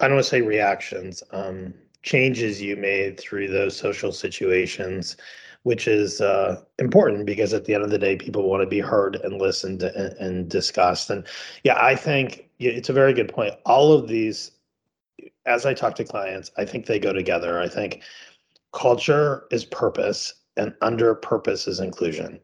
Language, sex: English, male